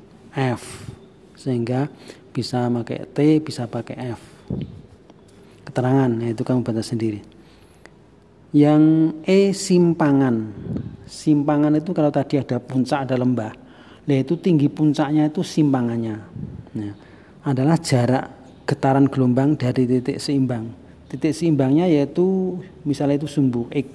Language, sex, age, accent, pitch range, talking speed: Indonesian, male, 40-59, native, 120-150 Hz, 120 wpm